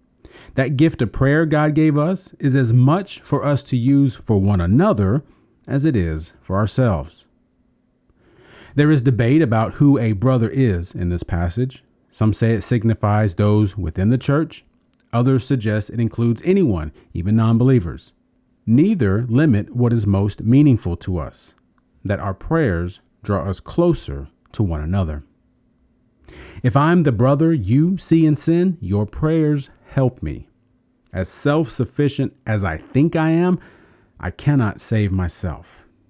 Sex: male